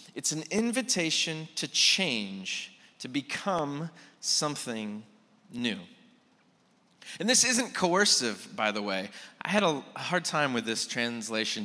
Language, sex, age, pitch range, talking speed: English, male, 30-49, 120-185 Hz, 125 wpm